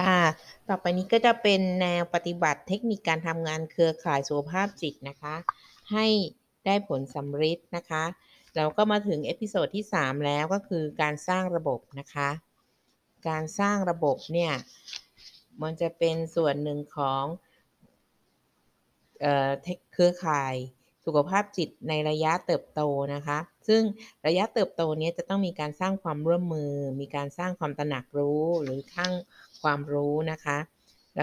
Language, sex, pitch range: Thai, female, 150-185 Hz